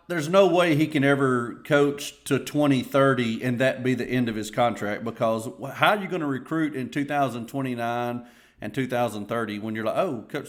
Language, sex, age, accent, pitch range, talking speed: English, male, 40-59, American, 110-135 Hz, 190 wpm